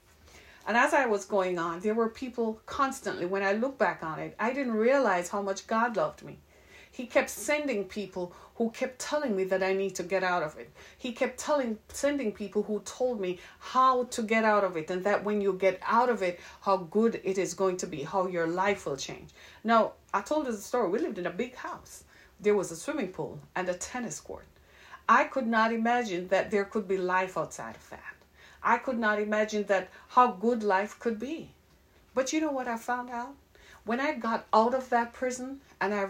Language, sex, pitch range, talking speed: English, female, 190-250 Hz, 220 wpm